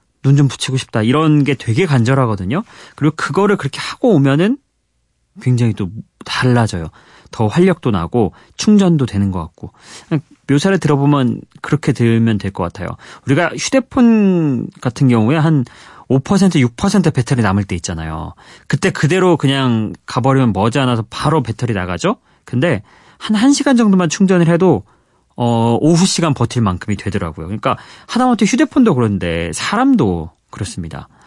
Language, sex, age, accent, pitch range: Korean, male, 30-49, native, 105-155 Hz